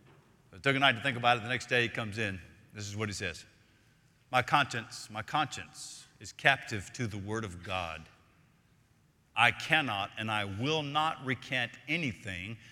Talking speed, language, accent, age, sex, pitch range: 180 wpm, English, American, 50-69, male, 120-155 Hz